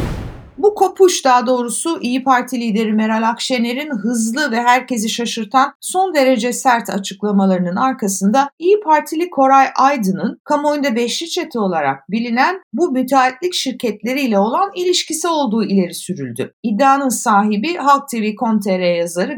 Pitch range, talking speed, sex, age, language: 210-275 Hz, 130 wpm, female, 60-79, Turkish